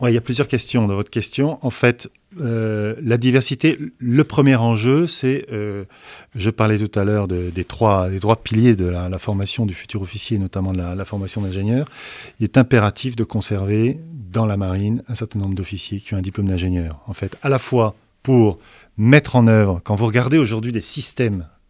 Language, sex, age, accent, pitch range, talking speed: French, male, 40-59, French, 100-125 Hz, 205 wpm